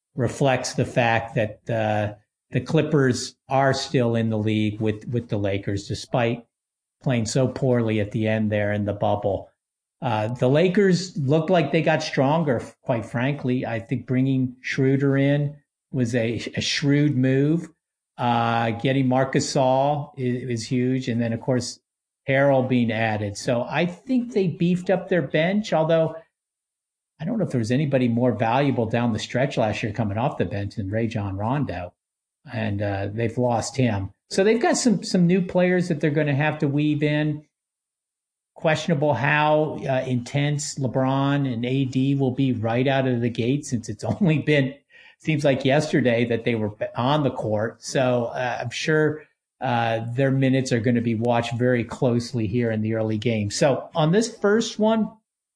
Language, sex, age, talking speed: English, male, 50-69, 175 wpm